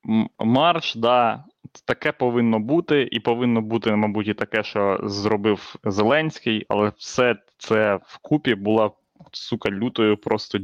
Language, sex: Ukrainian, male